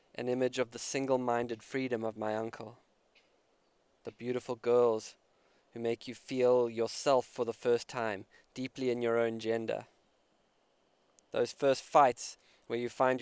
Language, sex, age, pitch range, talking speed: English, male, 20-39, 115-130 Hz, 145 wpm